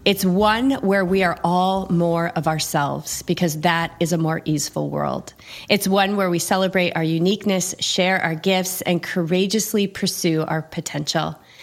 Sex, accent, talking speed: female, American, 160 wpm